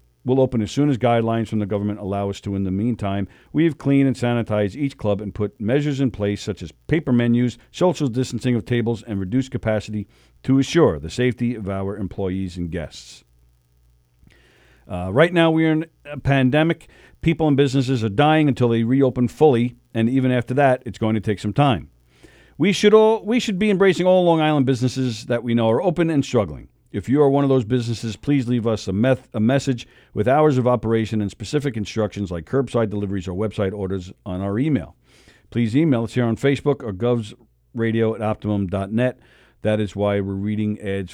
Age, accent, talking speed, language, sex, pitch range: 50-69, American, 195 wpm, English, male, 105-135 Hz